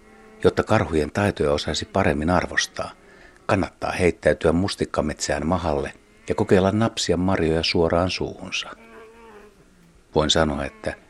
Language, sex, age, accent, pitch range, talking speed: Finnish, male, 60-79, native, 80-125 Hz, 105 wpm